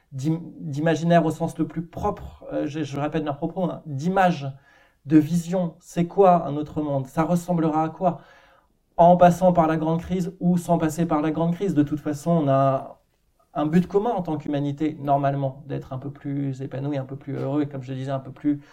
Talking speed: 210 wpm